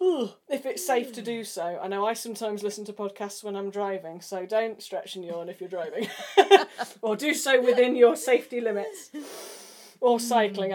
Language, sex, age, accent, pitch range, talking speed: English, female, 30-49, British, 190-240 Hz, 185 wpm